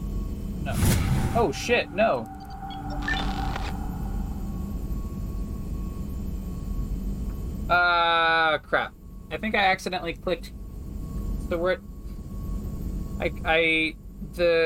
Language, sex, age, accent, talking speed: English, male, 20-39, American, 65 wpm